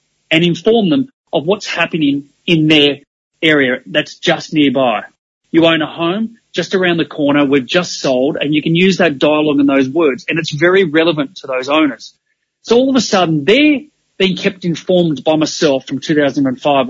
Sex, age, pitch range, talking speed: male, 30-49, 145-195 Hz, 185 wpm